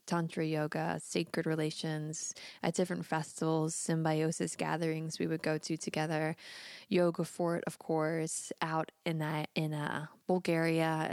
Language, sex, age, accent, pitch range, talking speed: English, female, 20-39, American, 155-185 Hz, 130 wpm